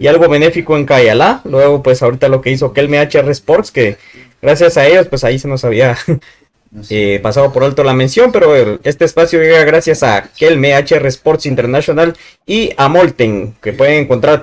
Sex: male